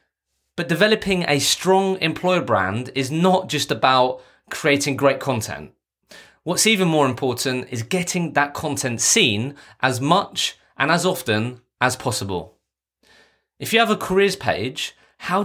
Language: English